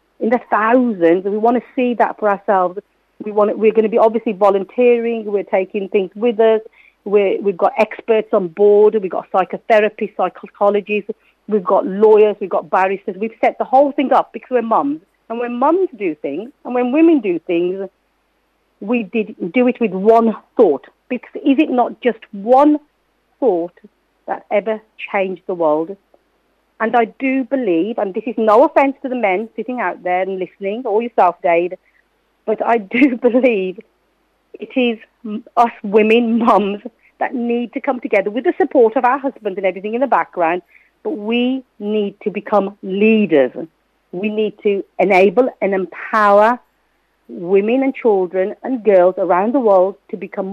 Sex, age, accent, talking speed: female, 50-69, British, 170 wpm